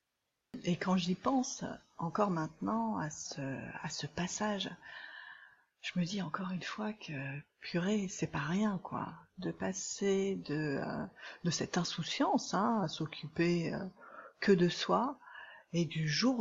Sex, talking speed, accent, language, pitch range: female, 135 wpm, French, French, 160-210 Hz